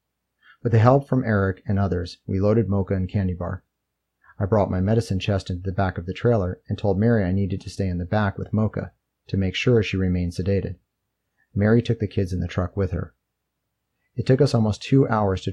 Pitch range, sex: 90-110 Hz, male